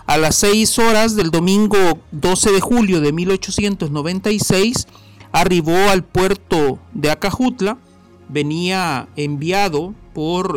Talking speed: 110 wpm